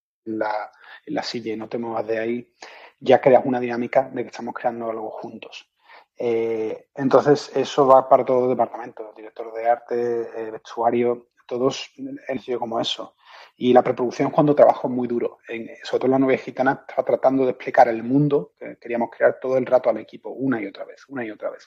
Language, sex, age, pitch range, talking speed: Spanish, male, 30-49, 115-135 Hz, 210 wpm